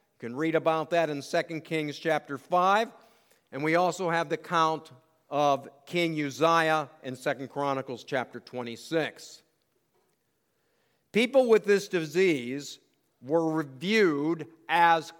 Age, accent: 50-69, American